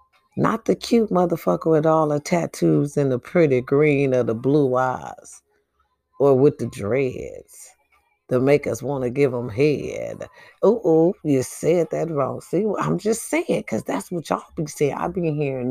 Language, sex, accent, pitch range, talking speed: English, female, American, 125-175 Hz, 185 wpm